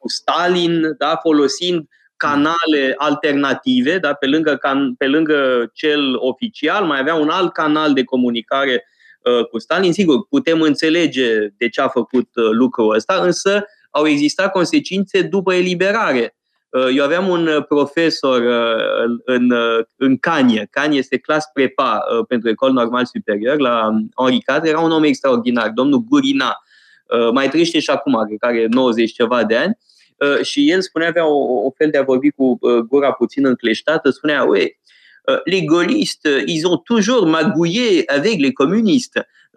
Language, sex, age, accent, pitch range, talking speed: Romanian, male, 20-39, native, 130-190 Hz, 150 wpm